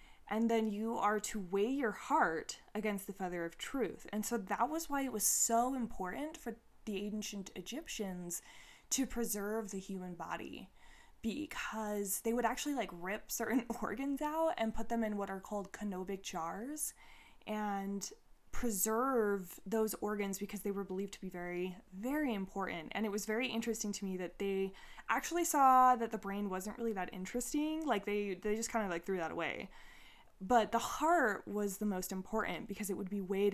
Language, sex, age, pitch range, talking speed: English, female, 20-39, 190-230 Hz, 185 wpm